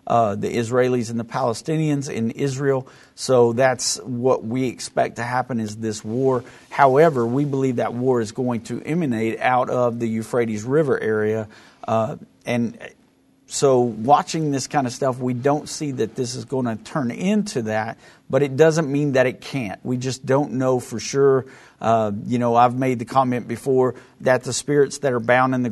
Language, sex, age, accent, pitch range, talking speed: English, male, 50-69, American, 115-135 Hz, 200 wpm